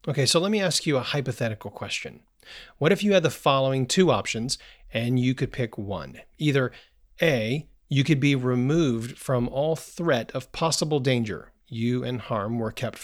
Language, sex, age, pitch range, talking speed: English, male, 40-59, 120-160 Hz, 180 wpm